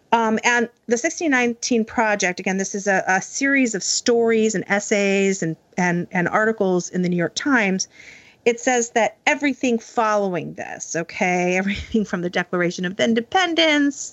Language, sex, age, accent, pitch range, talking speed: English, female, 40-59, American, 175-230 Hz, 155 wpm